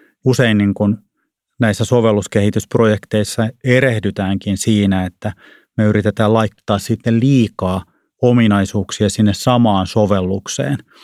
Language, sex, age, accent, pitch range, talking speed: Finnish, male, 30-49, native, 100-115 Hz, 85 wpm